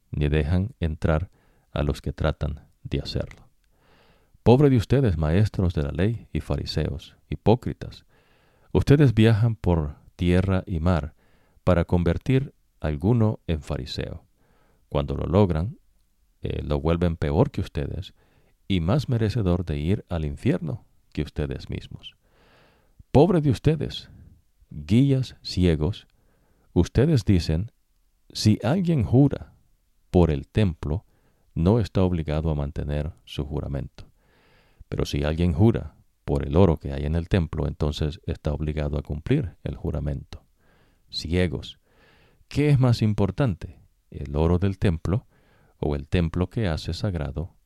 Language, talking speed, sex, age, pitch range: English, 130 wpm, male, 50-69, 75-105 Hz